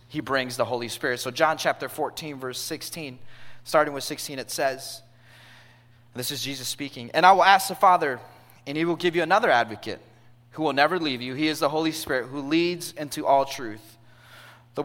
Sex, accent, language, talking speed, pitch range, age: male, American, English, 200 wpm, 120-165 Hz, 30-49